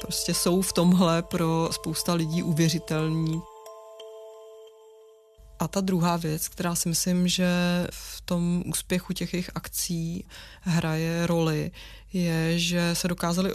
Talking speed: 120 wpm